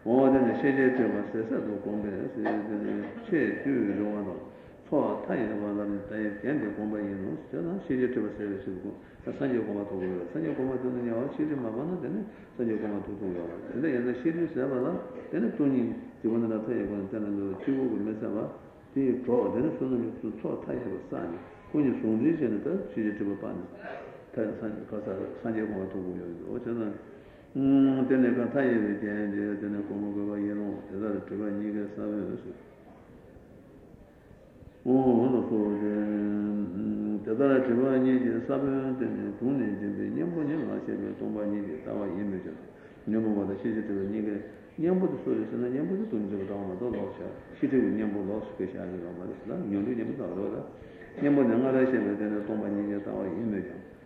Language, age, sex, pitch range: Italian, 60-79, male, 100-125 Hz